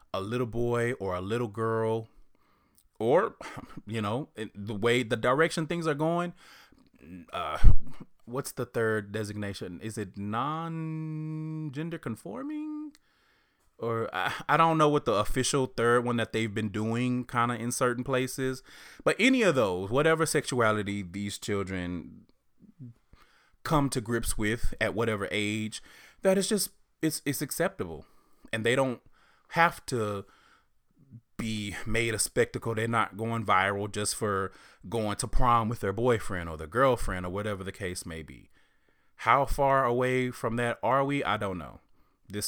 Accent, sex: American, male